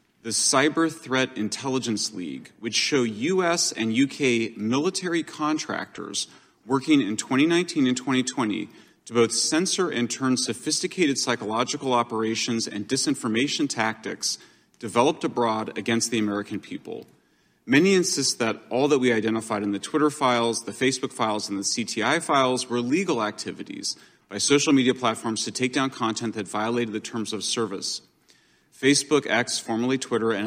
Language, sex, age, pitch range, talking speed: English, male, 30-49, 110-135 Hz, 145 wpm